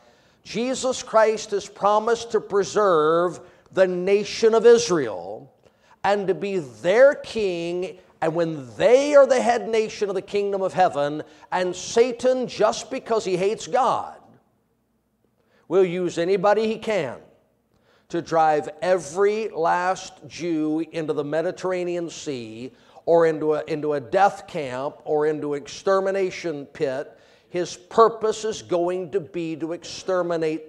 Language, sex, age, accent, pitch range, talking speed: English, male, 50-69, American, 160-220 Hz, 130 wpm